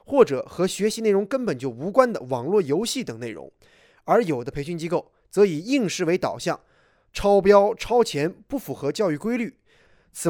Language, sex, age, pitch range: Chinese, male, 20-39, 160-225 Hz